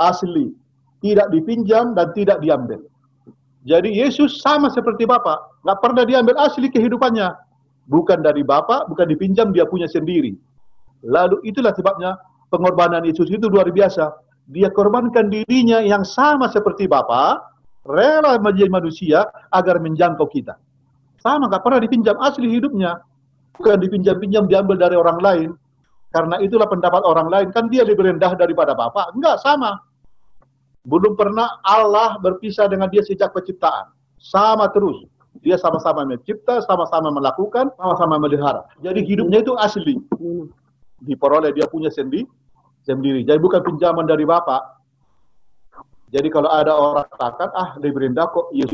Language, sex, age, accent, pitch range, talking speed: Indonesian, male, 50-69, native, 140-210 Hz, 135 wpm